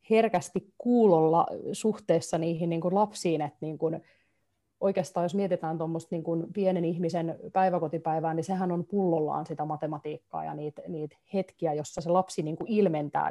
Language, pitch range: Finnish, 160-190 Hz